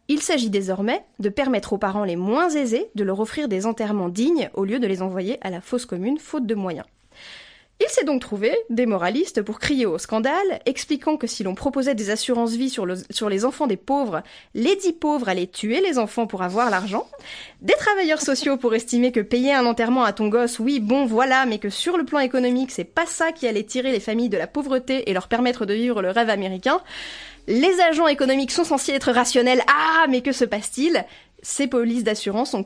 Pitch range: 220-280 Hz